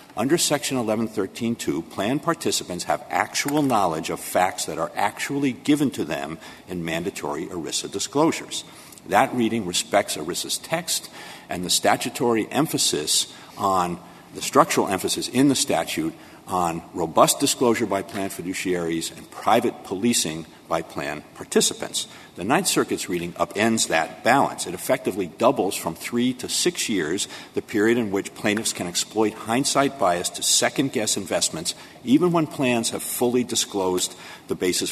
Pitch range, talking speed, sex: 90-125 Hz, 145 wpm, male